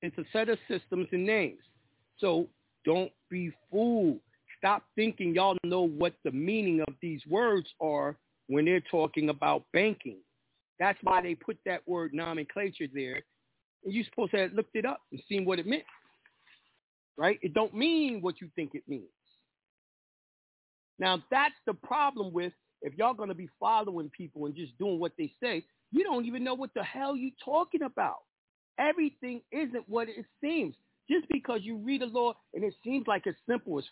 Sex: male